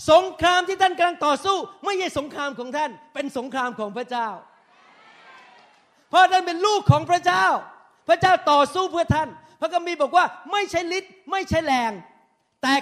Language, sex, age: Thai, male, 30-49